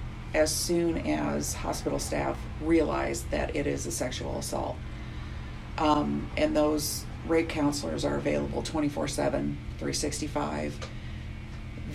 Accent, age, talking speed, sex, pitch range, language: American, 40-59, 105 wpm, female, 110-165 Hz, English